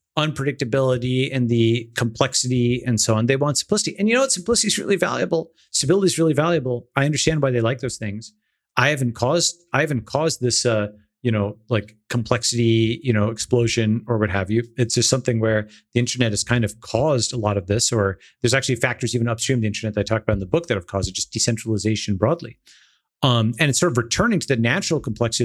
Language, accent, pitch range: English, American, 110-140 Hz